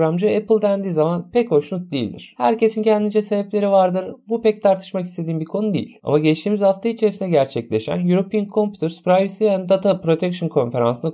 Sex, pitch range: male, 155-200 Hz